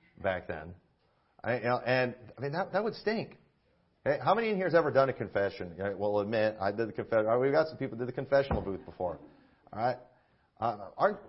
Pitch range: 110-145 Hz